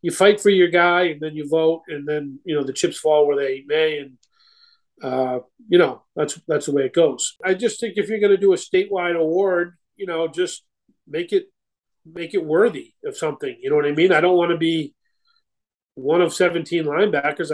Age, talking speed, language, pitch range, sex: 40-59, 220 wpm, English, 150-195 Hz, male